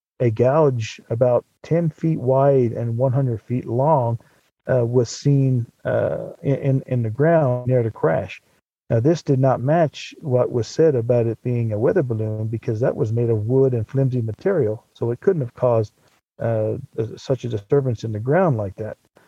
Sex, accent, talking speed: male, American, 180 wpm